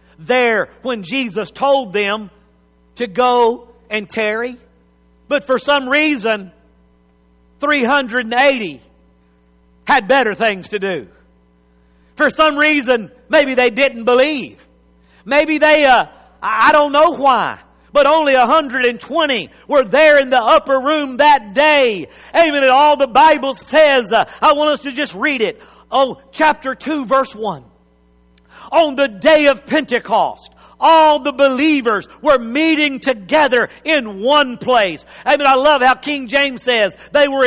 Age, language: 50-69, English